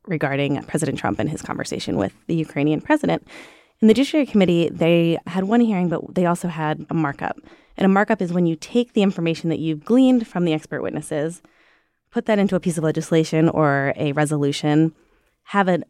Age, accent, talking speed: 20-39, American, 195 wpm